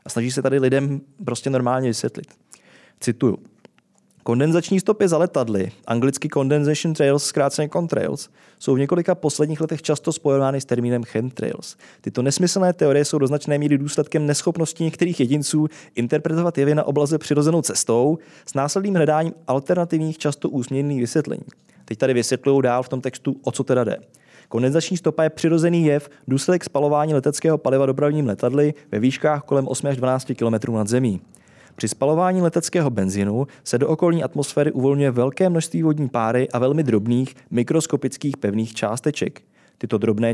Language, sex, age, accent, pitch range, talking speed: Czech, male, 20-39, native, 125-155 Hz, 155 wpm